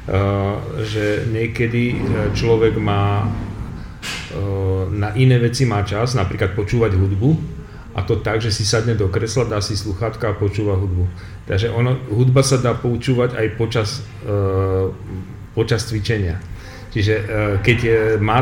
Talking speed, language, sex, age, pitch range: 140 wpm, Slovak, male, 40-59, 100-120 Hz